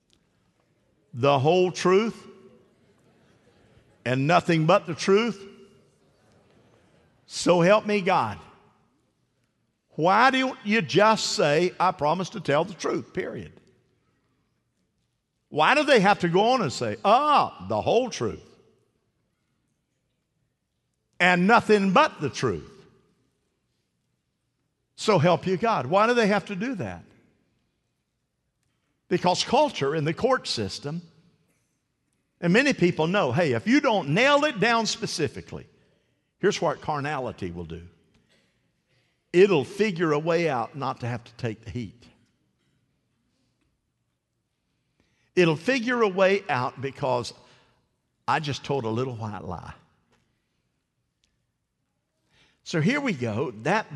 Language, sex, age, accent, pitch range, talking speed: English, male, 50-69, American, 125-205 Hz, 120 wpm